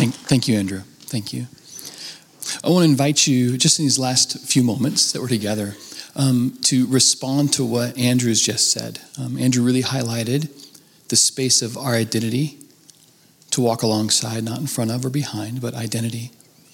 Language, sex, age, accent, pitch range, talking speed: English, male, 40-59, American, 120-140 Hz, 170 wpm